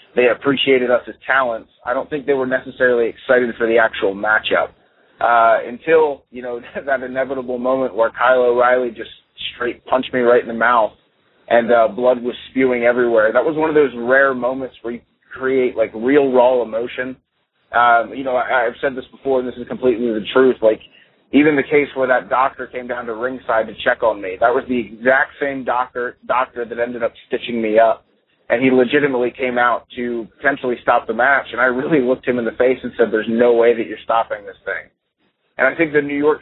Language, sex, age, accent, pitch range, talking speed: English, male, 30-49, American, 120-135 Hz, 215 wpm